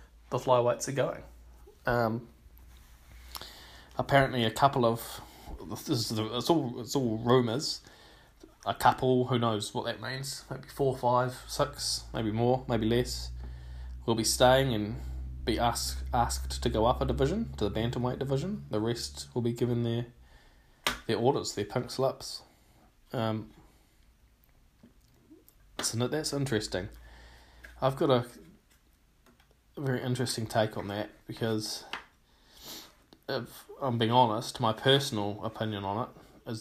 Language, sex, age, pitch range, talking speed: English, male, 20-39, 105-125 Hz, 130 wpm